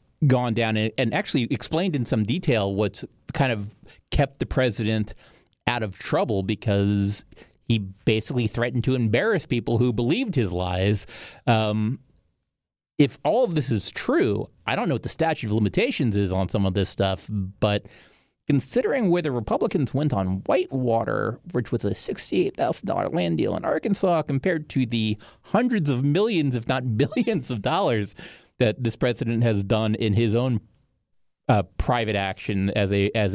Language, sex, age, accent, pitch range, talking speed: English, male, 30-49, American, 105-130 Hz, 160 wpm